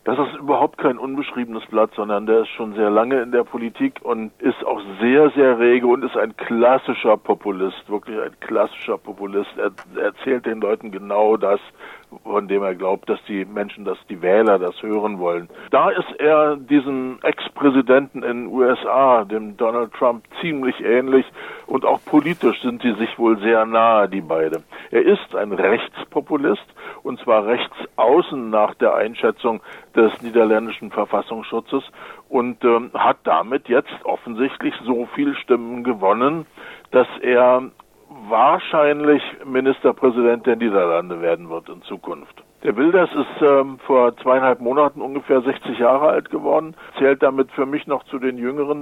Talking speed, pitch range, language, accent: 155 wpm, 110-135 Hz, German, German